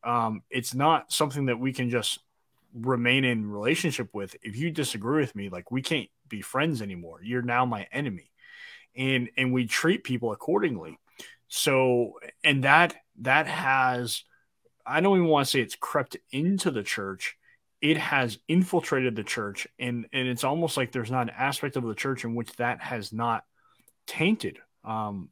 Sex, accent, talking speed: male, American, 175 wpm